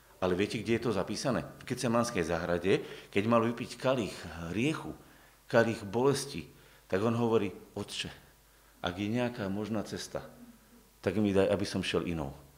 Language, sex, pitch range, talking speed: Slovak, male, 100-135 Hz, 160 wpm